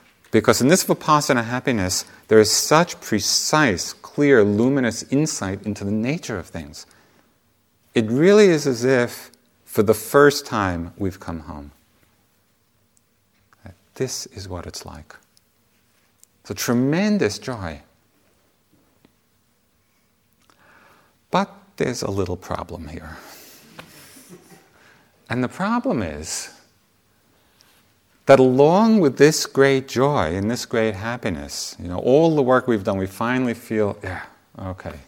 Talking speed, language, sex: 120 wpm, English, male